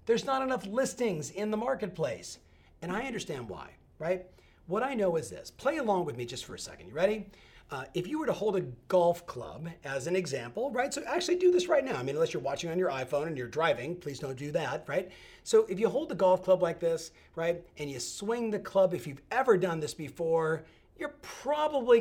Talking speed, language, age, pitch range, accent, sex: 230 wpm, English, 40-59, 155-235 Hz, American, male